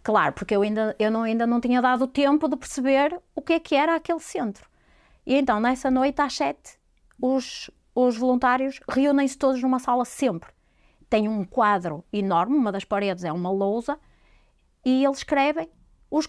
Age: 30-49